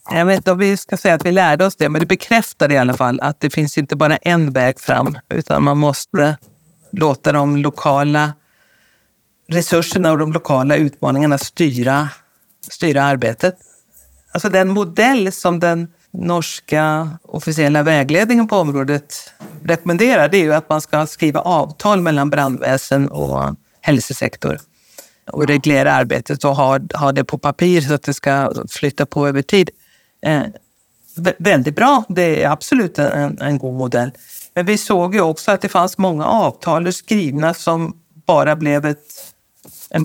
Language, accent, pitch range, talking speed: Swedish, native, 145-180 Hz, 155 wpm